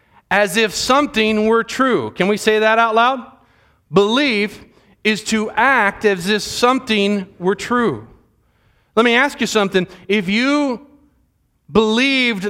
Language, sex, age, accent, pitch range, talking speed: English, male, 40-59, American, 190-240 Hz, 135 wpm